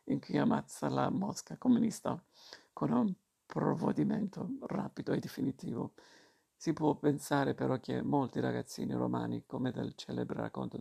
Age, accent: 50-69, native